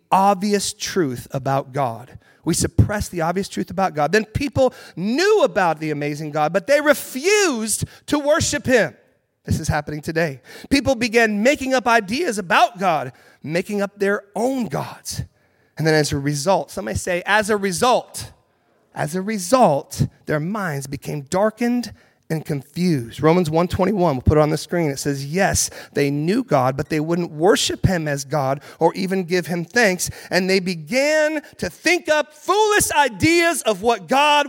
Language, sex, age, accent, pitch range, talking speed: English, male, 30-49, American, 140-220 Hz, 165 wpm